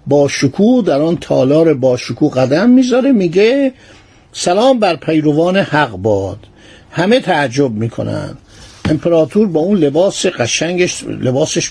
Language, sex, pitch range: Persian, male, 130-195 Hz